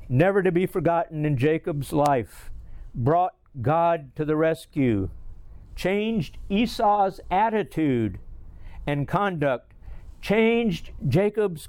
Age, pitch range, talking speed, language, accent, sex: 60-79, 105-165 Hz, 100 wpm, English, American, male